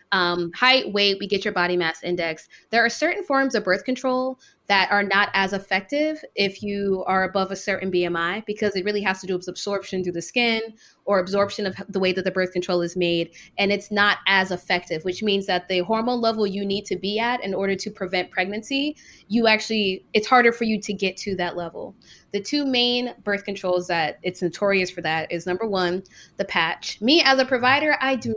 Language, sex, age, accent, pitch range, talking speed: English, female, 20-39, American, 180-215 Hz, 220 wpm